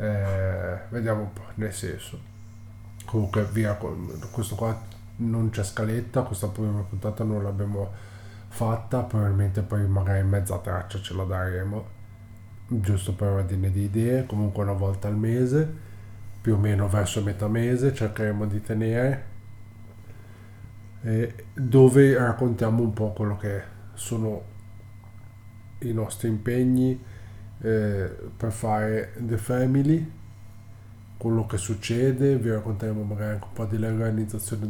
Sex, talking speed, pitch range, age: male, 125 wpm, 105-115 Hz, 20-39